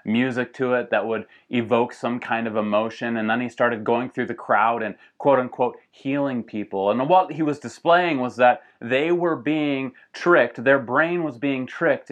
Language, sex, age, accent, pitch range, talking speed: English, male, 30-49, American, 110-135 Hz, 195 wpm